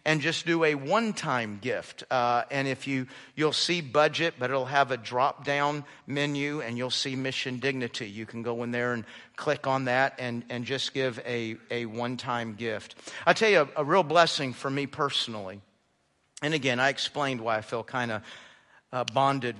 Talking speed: 190 wpm